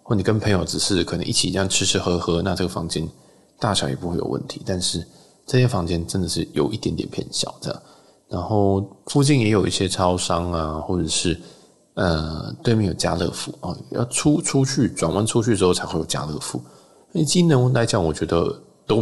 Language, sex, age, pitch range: Chinese, male, 20-39, 85-105 Hz